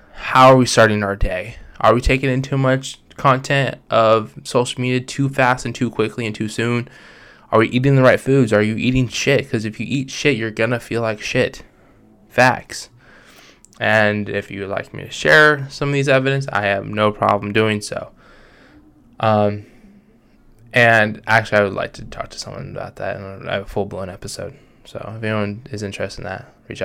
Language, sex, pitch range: English, male, 105-120 Hz